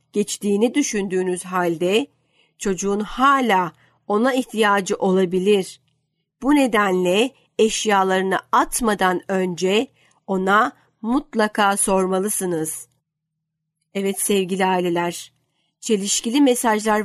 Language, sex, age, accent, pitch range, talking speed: Turkish, female, 50-69, native, 180-225 Hz, 75 wpm